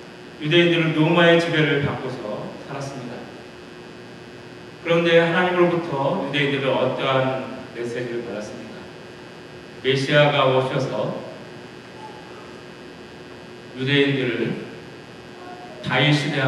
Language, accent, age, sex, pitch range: Korean, native, 40-59, male, 130-175 Hz